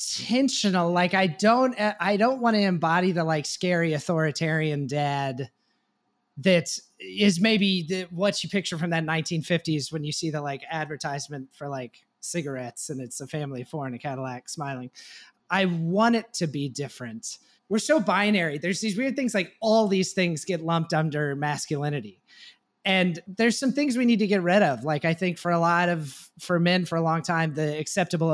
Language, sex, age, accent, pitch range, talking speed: English, male, 30-49, American, 150-195 Hz, 190 wpm